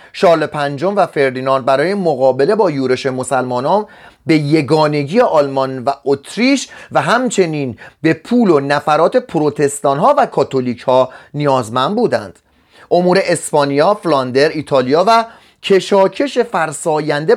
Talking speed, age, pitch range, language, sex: 115 wpm, 30-49, 140-200 Hz, Persian, male